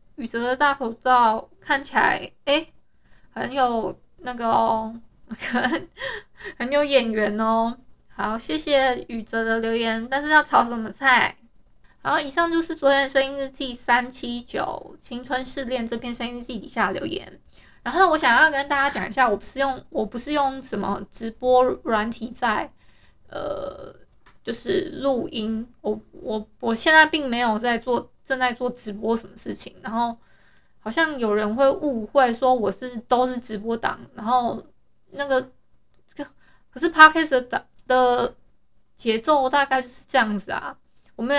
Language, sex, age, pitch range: Chinese, female, 20-39, 230-280 Hz